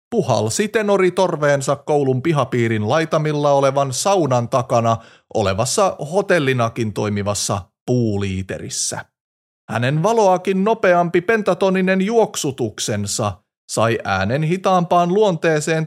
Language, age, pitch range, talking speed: Finnish, 30-49, 110-180 Hz, 85 wpm